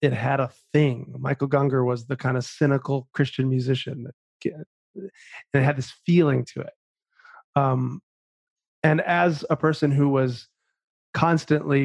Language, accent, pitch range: English, American, 125-150 Hz